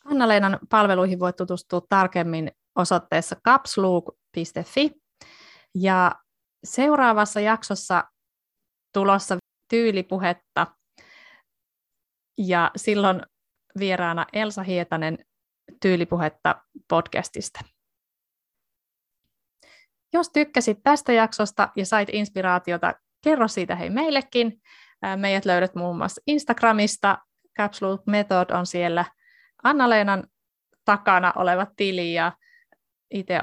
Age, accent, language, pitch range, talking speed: 30-49, native, Finnish, 180-230 Hz, 85 wpm